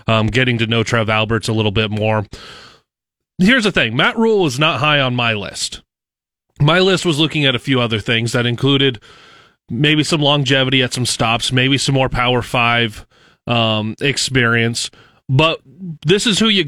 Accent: American